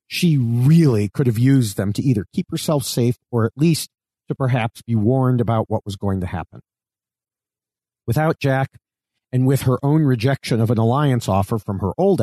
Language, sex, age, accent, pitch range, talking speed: English, male, 40-59, American, 110-140 Hz, 185 wpm